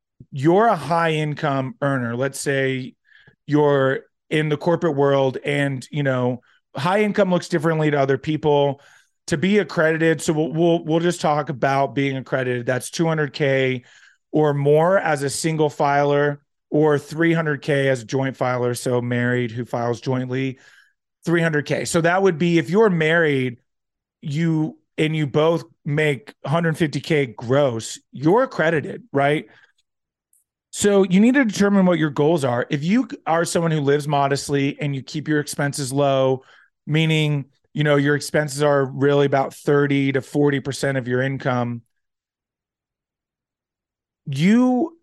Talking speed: 150 wpm